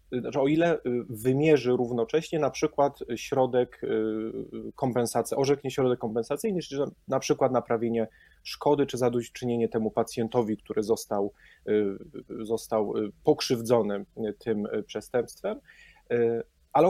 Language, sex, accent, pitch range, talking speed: Polish, male, native, 115-145 Hz, 95 wpm